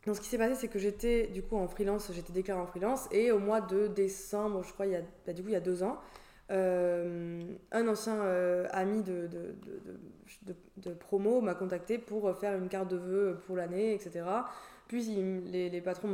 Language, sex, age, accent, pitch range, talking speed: French, female, 20-39, French, 185-225 Hz, 225 wpm